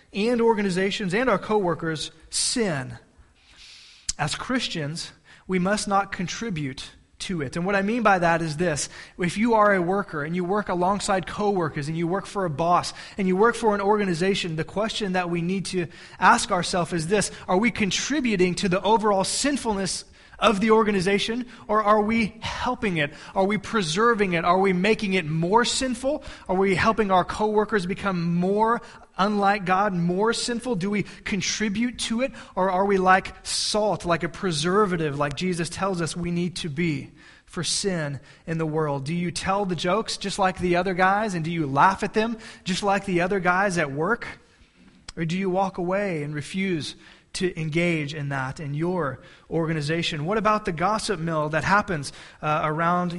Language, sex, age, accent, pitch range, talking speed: English, male, 20-39, American, 170-210 Hz, 185 wpm